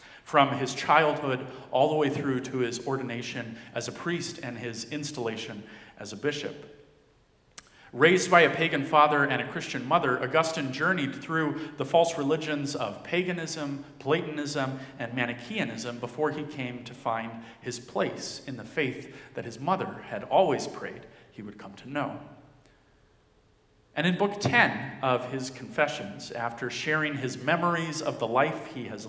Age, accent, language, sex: 40-59, American, English, male